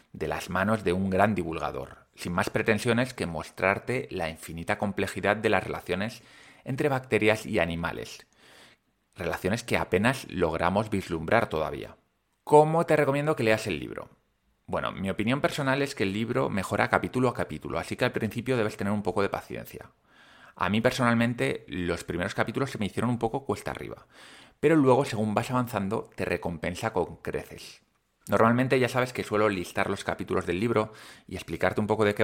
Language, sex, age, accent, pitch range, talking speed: Spanish, male, 30-49, Spanish, 95-120 Hz, 175 wpm